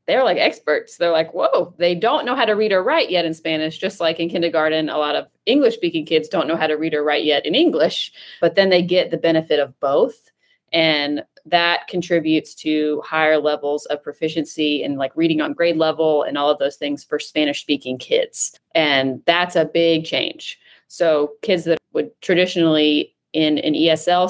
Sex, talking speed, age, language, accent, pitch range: female, 200 wpm, 30-49, English, American, 155-180 Hz